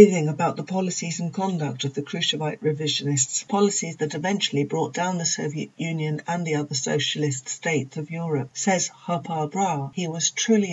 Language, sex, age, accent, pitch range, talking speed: English, female, 60-79, British, 145-175 Hz, 170 wpm